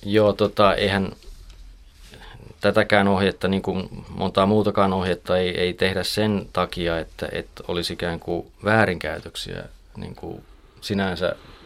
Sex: male